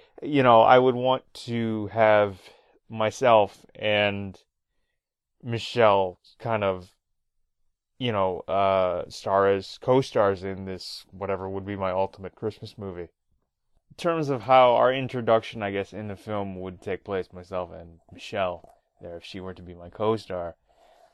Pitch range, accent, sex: 95-120 Hz, American, male